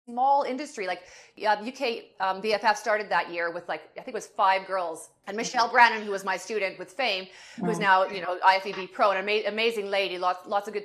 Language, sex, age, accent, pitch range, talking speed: English, female, 30-49, American, 190-255 Hz, 225 wpm